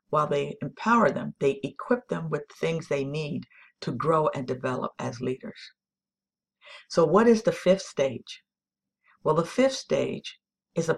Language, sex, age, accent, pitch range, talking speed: English, female, 50-69, American, 150-210 Hz, 160 wpm